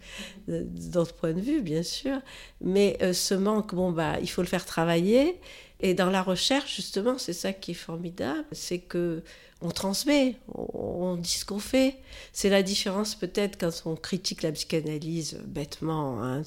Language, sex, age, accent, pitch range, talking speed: French, female, 50-69, French, 170-230 Hz, 175 wpm